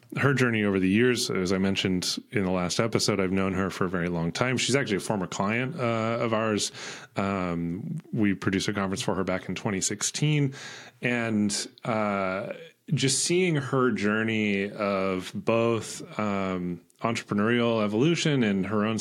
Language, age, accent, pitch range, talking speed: English, 30-49, American, 95-125 Hz, 165 wpm